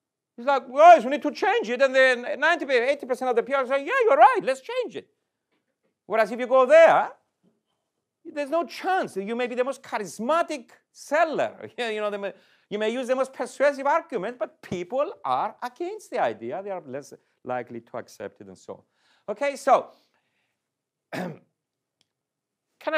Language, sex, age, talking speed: Italian, male, 40-59, 175 wpm